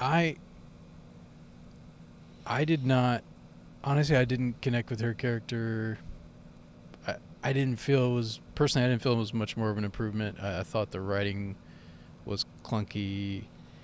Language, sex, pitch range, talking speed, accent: English, male, 95-120 Hz, 150 wpm, American